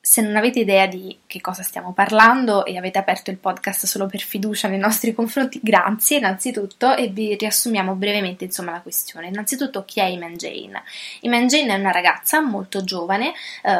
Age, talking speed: 20-39, 185 wpm